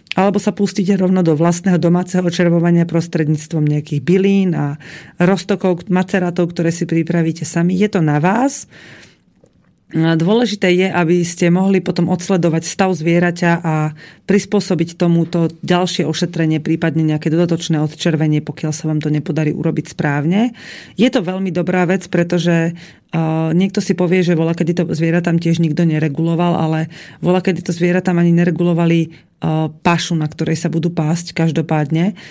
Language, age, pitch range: Slovak, 30-49, 160-180 Hz